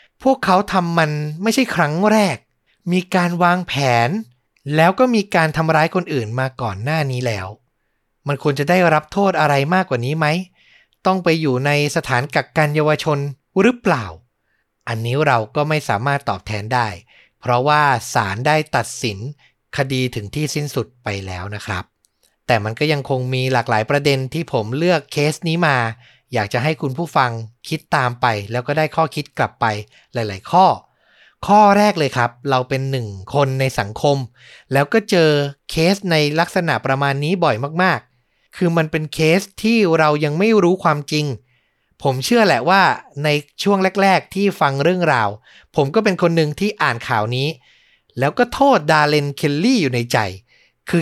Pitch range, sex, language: 125-170 Hz, male, Thai